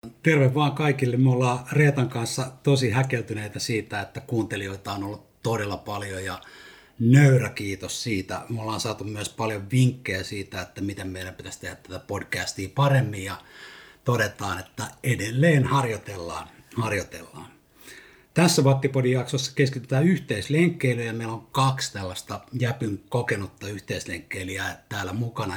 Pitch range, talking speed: 100-135 Hz, 130 wpm